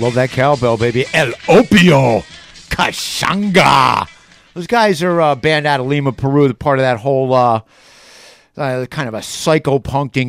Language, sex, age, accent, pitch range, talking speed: English, male, 50-69, American, 120-170 Hz, 165 wpm